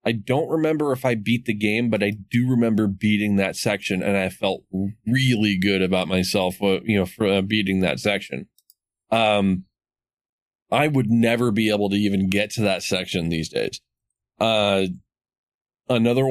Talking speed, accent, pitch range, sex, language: 160 wpm, American, 95-115 Hz, male, English